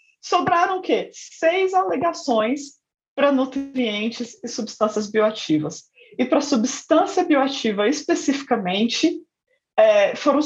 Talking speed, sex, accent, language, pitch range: 100 wpm, female, Brazilian, Portuguese, 225-325 Hz